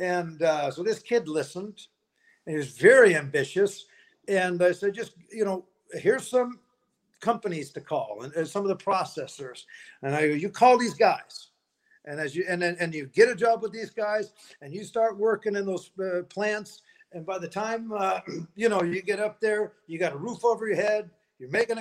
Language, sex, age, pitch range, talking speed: English, male, 60-79, 175-220 Hz, 200 wpm